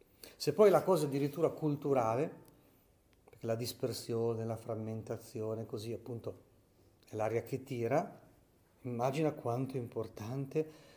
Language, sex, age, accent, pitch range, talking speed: Italian, male, 40-59, native, 105-140 Hz, 115 wpm